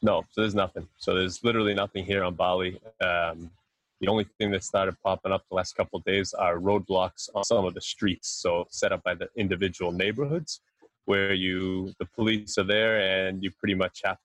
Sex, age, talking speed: male, 20-39, 205 wpm